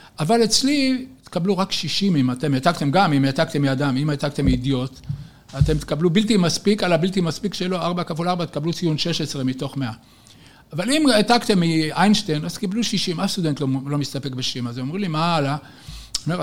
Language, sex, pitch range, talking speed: Hebrew, male, 140-190 Hz, 185 wpm